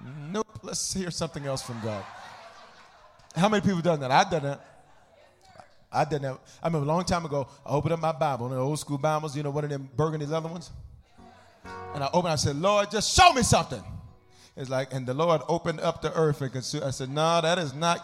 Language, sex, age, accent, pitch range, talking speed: English, male, 40-59, American, 135-175 Hz, 230 wpm